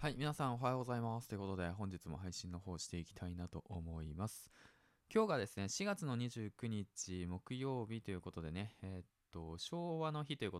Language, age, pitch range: Japanese, 20-39, 90-125 Hz